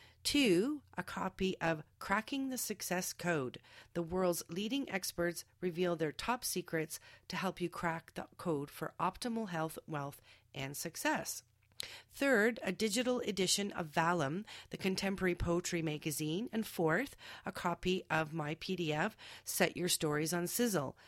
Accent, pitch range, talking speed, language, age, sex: American, 150-200 Hz, 140 wpm, English, 40-59, female